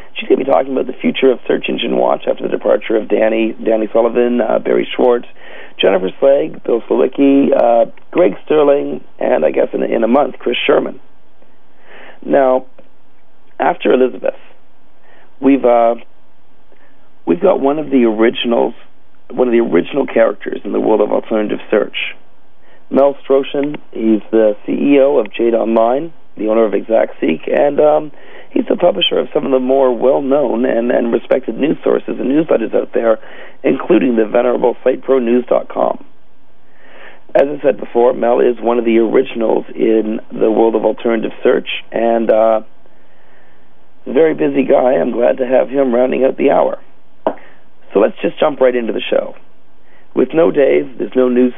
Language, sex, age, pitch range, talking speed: English, male, 50-69, 110-130 Hz, 165 wpm